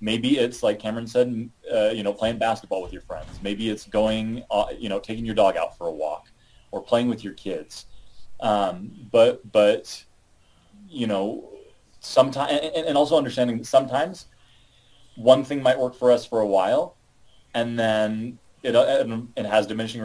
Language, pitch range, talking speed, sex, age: English, 105-125 Hz, 175 wpm, male, 30-49